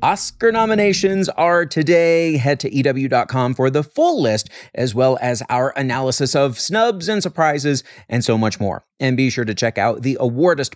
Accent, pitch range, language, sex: American, 120-170 Hz, English, male